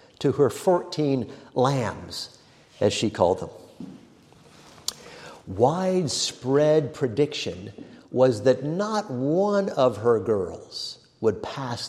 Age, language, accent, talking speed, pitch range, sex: 50-69, English, American, 95 wpm, 105-140 Hz, male